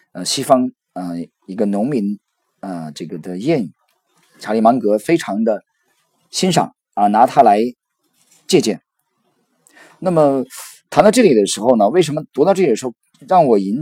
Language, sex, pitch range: Chinese, male, 95-140 Hz